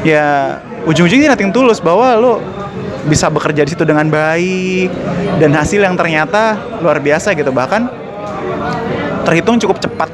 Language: Indonesian